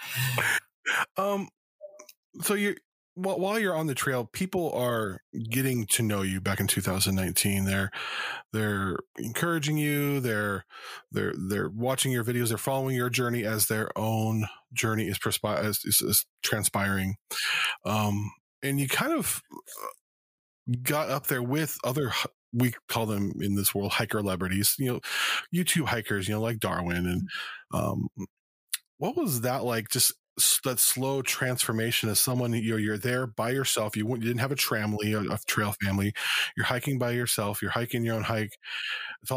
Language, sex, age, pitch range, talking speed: English, male, 20-39, 105-135 Hz, 160 wpm